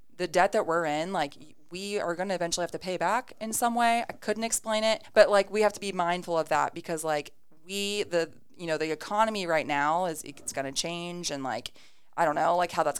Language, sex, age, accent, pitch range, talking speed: English, female, 20-39, American, 155-195 Hz, 250 wpm